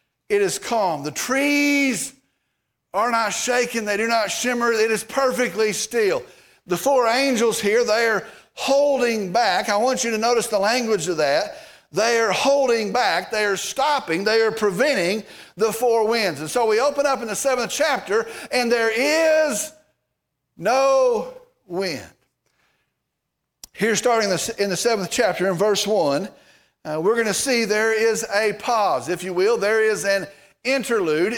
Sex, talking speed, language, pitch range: male, 165 wpm, English, 205-265 Hz